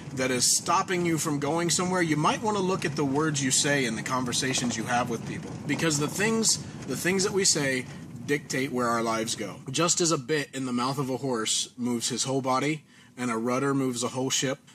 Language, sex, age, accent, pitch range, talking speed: English, male, 30-49, American, 125-155 Hz, 235 wpm